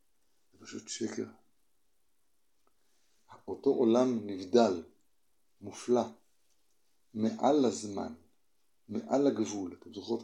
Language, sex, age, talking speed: Hebrew, male, 60-79, 70 wpm